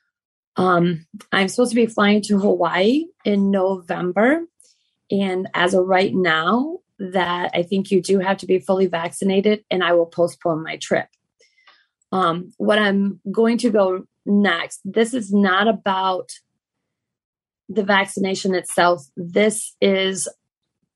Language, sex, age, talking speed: English, female, 20-39, 135 wpm